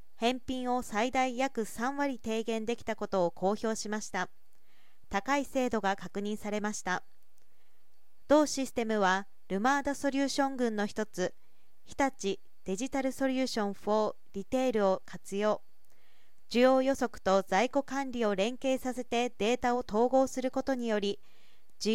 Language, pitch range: Japanese, 205-260 Hz